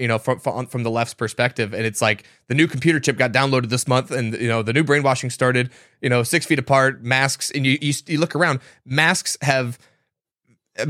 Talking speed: 220 wpm